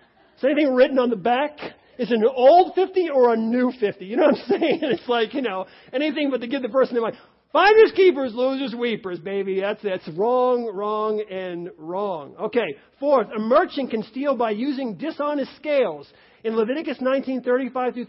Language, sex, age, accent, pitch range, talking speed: English, male, 40-59, American, 195-250 Hz, 185 wpm